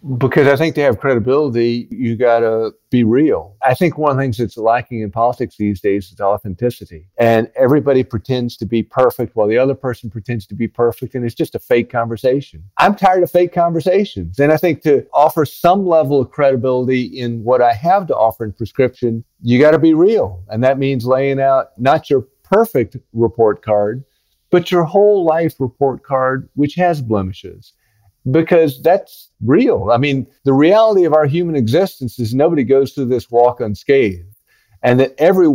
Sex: male